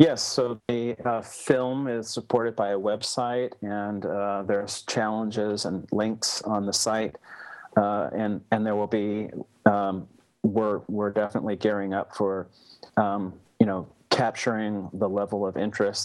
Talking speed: 150 wpm